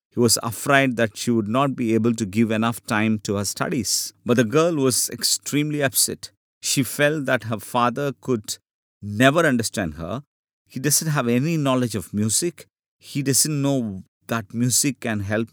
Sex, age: male, 50-69